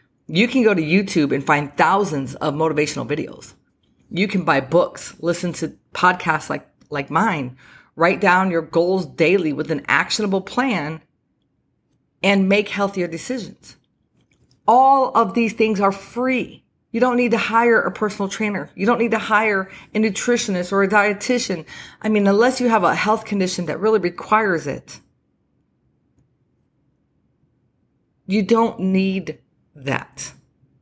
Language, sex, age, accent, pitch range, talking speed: English, female, 30-49, American, 155-210 Hz, 145 wpm